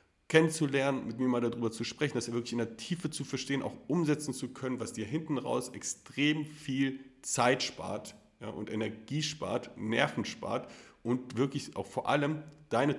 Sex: male